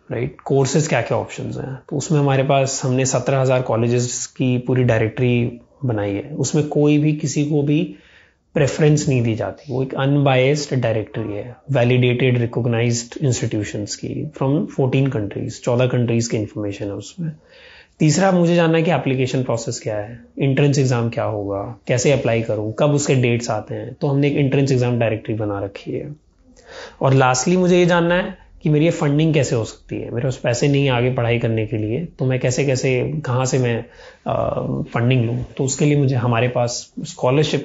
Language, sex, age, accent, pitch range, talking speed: Hindi, male, 20-39, native, 120-150 Hz, 185 wpm